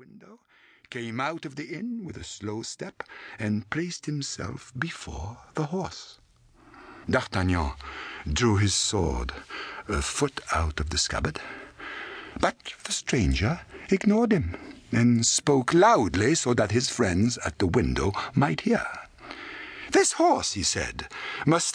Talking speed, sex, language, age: 130 wpm, male, English, 60-79